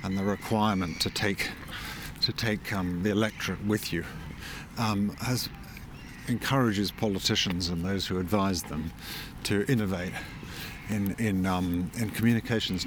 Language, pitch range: English, 90-110 Hz